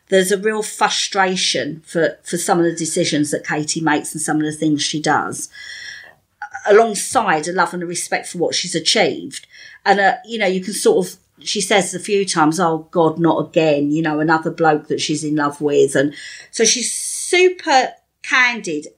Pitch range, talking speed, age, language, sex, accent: 170-245 Hz, 195 wpm, 40-59, English, female, British